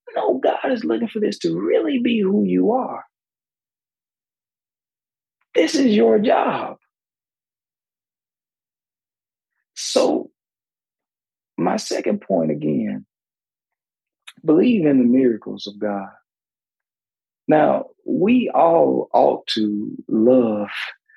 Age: 40-59